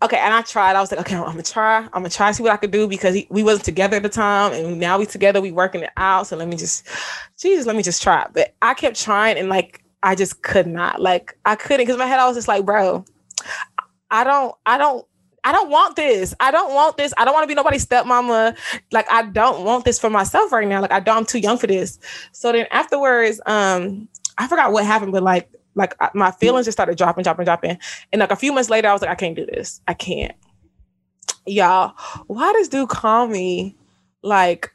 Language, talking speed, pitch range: English, 245 wpm, 185-240 Hz